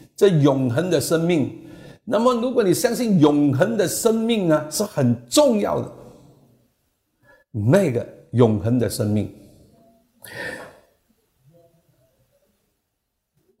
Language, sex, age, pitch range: Chinese, male, 60-79, 105-160 Hz